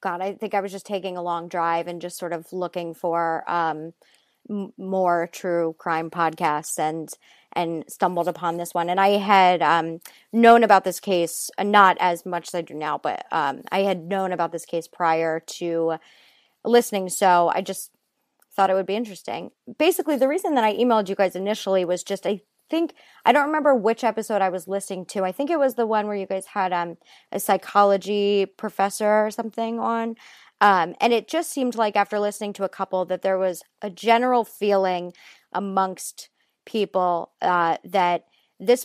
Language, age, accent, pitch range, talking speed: English, 30-49, American, 175-210 Hz, 195 wpm